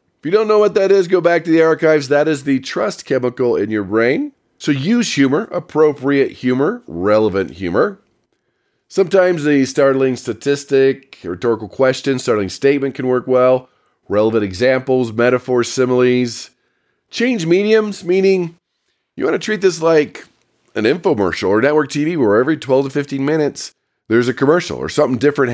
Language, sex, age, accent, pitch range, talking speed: English, male, 40-59, American, 115-150 Hz, 160 wpm